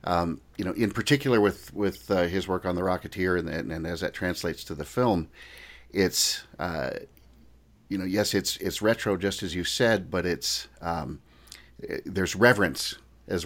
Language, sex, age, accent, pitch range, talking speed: English, male, 40-59, American, 85-100 Hz, 185 wpm